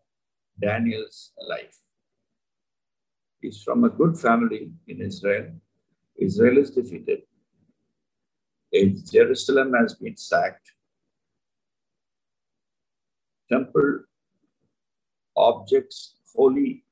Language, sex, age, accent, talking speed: English, male, 50-69, Indian, 65 wpm